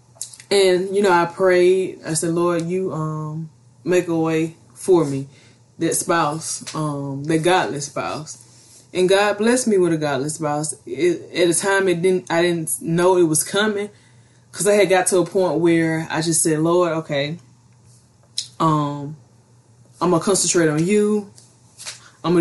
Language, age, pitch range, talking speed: English, 20-39, 150-190 Hz, 160 wpm